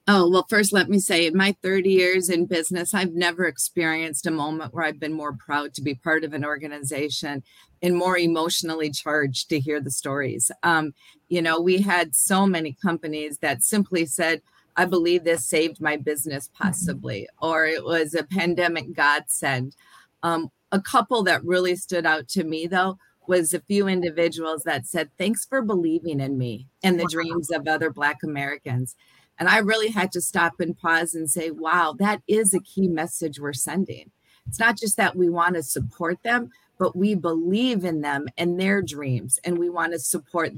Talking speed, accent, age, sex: 190 wpm, American, 40-59, female